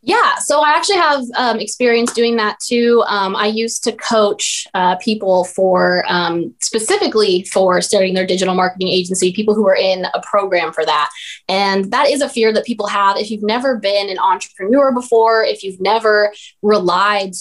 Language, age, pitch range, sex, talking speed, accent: English, 20-39, 185-230 Hz, female, 185 wpm, American